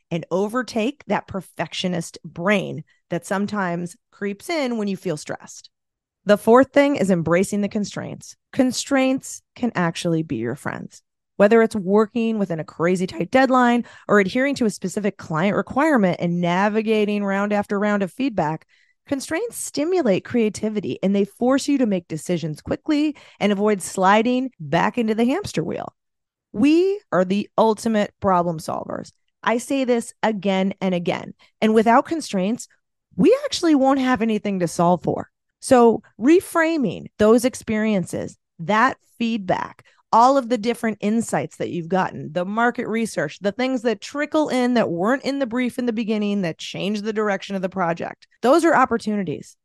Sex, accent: female, American